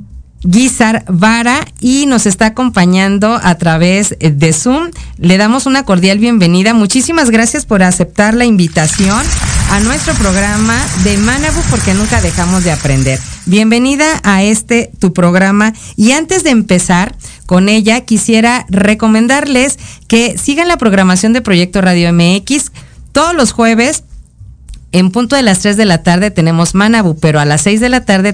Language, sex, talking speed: Spanish, female, 150 wpm